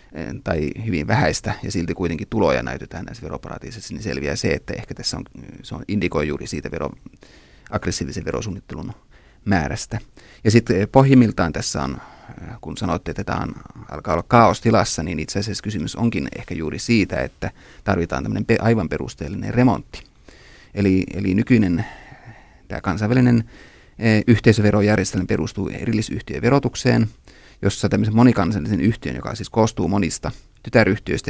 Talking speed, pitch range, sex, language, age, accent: 130 wpm, 90-115 Hz, male, Finnish, 30-49, native